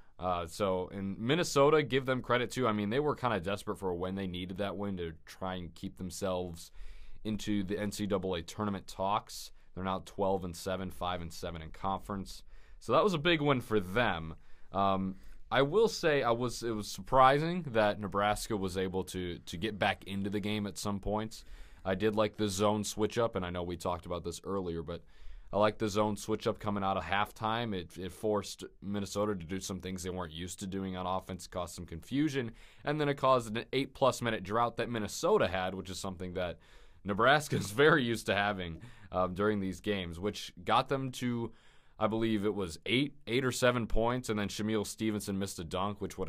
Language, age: English, 20-39